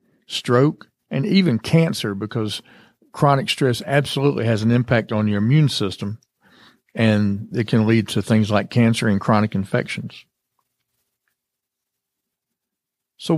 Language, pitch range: English, 110-140 Hz